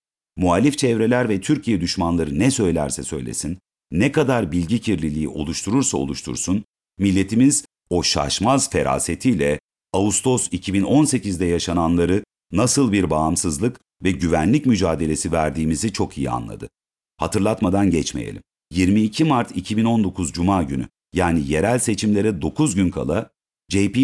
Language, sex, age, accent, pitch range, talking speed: Turkish, male, 50-69, native, 85-115 Hz, 110 wpm